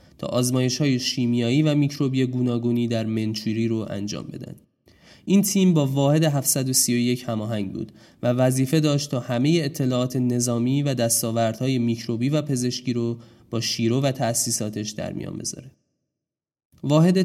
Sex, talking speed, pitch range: male, 140 wpm, 115-140 Hz